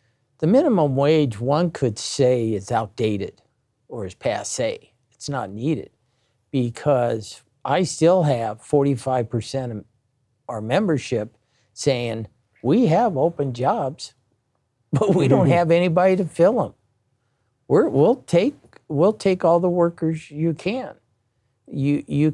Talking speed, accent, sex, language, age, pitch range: 125 wpm, American, male, English, 50-69, 120-160 Hz